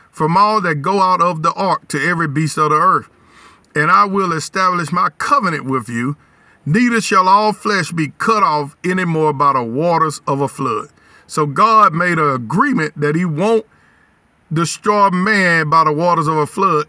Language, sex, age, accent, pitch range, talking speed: English, male, 50-69, American, 155-210 Hz, 185 wpm